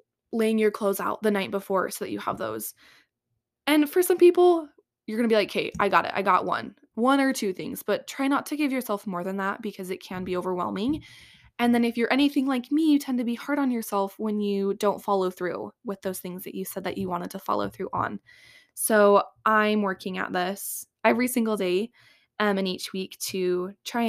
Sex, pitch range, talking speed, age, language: female, 195-255 Hz, 230 wpm, 20-39, English